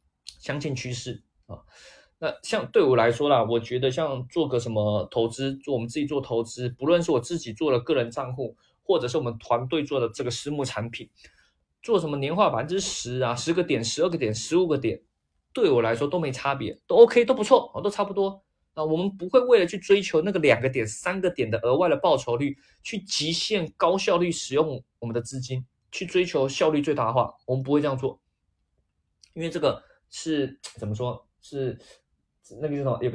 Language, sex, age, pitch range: Chinese, male, 20-39, 120-175 Hz